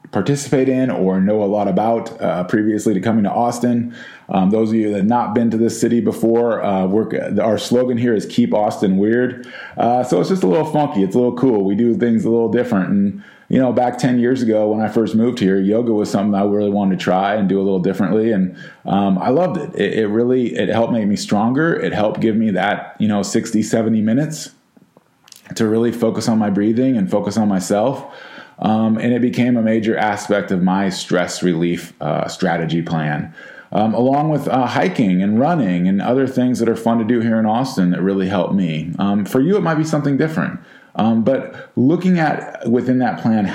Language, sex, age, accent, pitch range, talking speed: English, male, 20-39, American, 95-125 Hz, 220 wpm